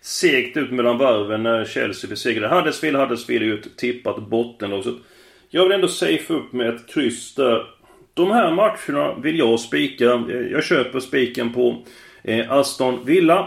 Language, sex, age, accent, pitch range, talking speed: Swedish, male, 30-49, native, 115-155 Hz, 155 wpm